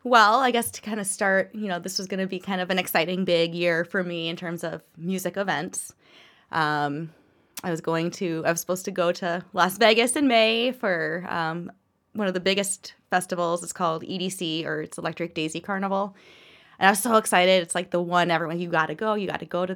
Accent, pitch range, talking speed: American, 160-190 Hz, 230 wpm